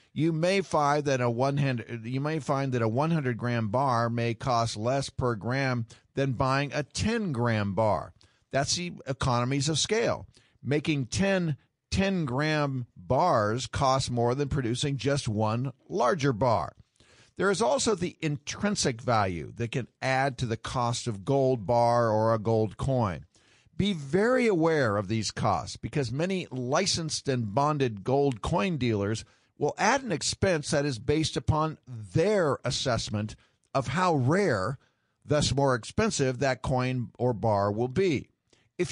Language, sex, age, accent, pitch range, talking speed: English, male, 50-69, American, 115-150 Hz, 155 wpm